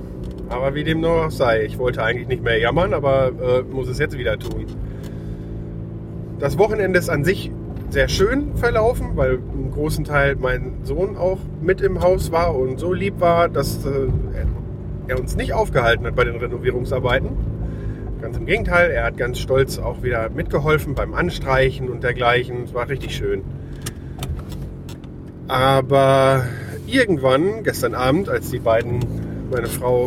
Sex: male